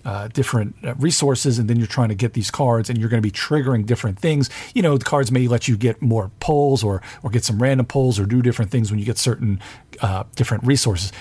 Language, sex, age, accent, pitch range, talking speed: English, male, 40-59, American, 110-135 Hz, 245 wpm